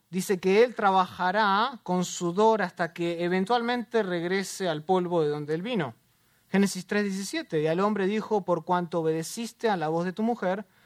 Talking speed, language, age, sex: 170 wpm, English, 30-49, male